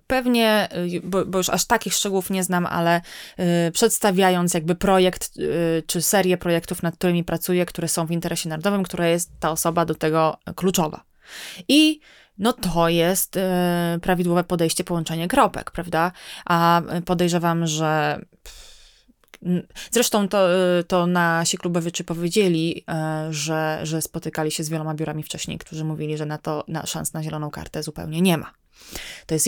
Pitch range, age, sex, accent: 165-185 Hz, 20-39, female, native